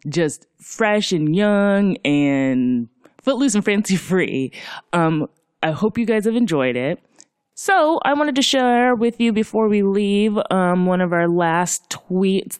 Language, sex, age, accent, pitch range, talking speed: English, female, 20-39, American, 150-210 Hz, 155 wpm